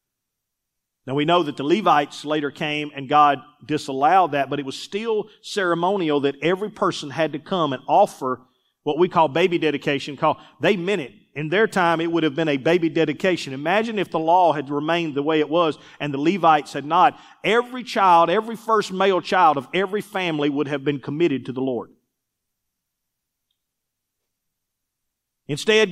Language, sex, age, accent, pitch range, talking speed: English, male, 40-59, American, 150-225 Hz, 175 wpm